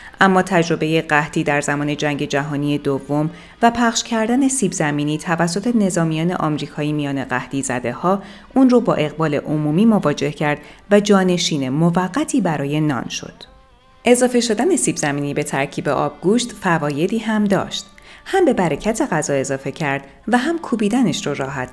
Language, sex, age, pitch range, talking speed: Persian, female, 30-49, 145-210 Hz, 150 wpm